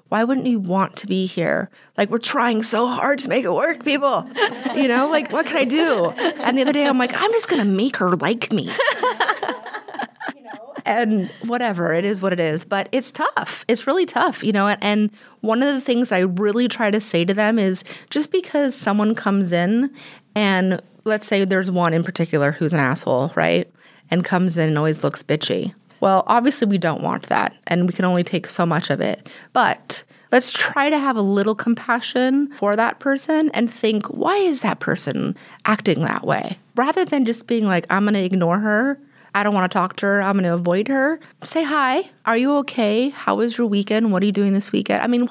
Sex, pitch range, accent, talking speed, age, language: female, 190-260 Hz, American, 215 wpm, 30-49, English